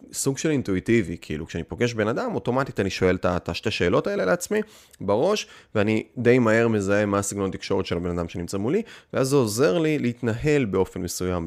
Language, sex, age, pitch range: Hebrew, male, 20-39, 95-120 Hz